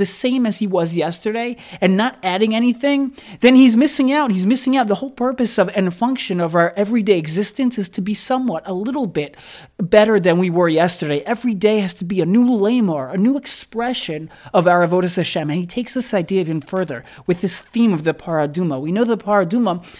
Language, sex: English, male